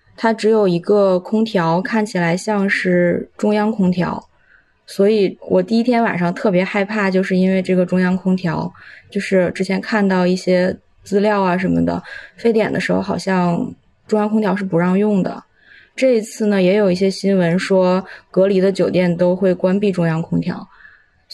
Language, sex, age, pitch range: Chinese, female, 20-39, 175-200 Hz